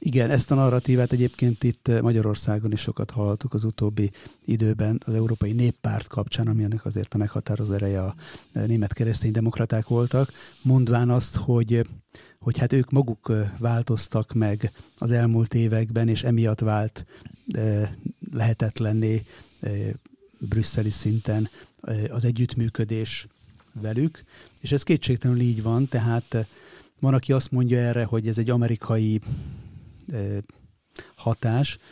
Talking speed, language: 115 wpm, Hungarian